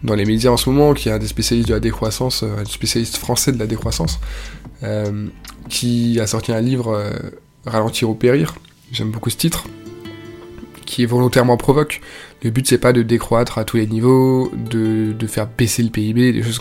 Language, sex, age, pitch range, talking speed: French, male, 20-39, 110-125 Hz, 200 wpm